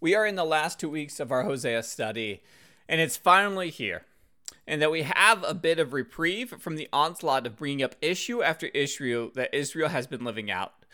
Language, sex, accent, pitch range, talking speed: English, male, American, 130-175 Hz, 210 wpm